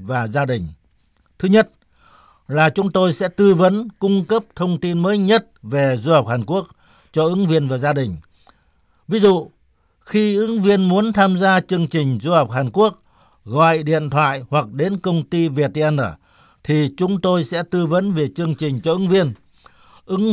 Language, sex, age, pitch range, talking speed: Vietnamese, male, 60-79, 140-185 Hz, 185 wpm